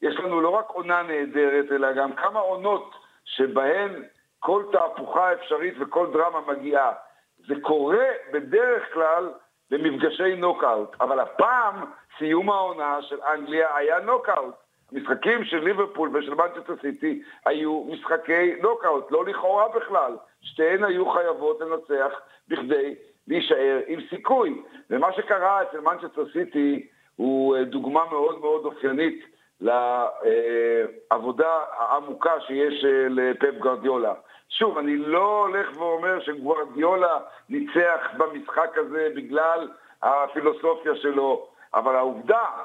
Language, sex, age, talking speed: Hebrew, male, 60-79, 110 wpm